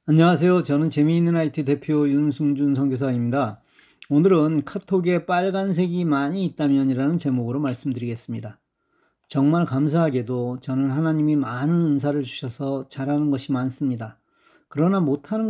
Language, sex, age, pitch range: Korean, male, 40-59, 135-180 Hz